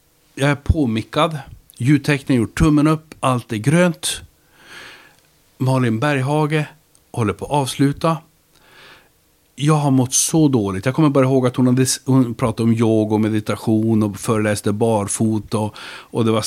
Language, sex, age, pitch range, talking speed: Swedish, male, 60-79, 110-145 Hz, 150 wpm